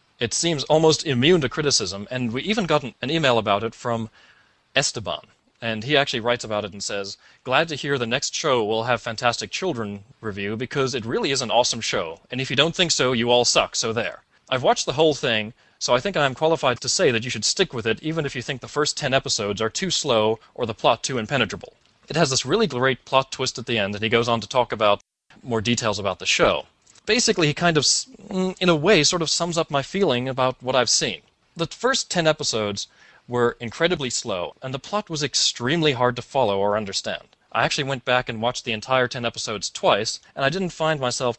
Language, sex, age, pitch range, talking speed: English, male, 30-49, 115-150 Hz, 230 wpm